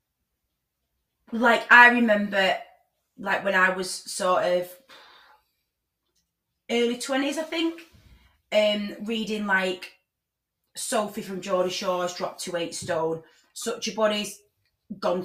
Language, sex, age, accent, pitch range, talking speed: English, female, 20-39, British, 190-245 Hz, 110 wpm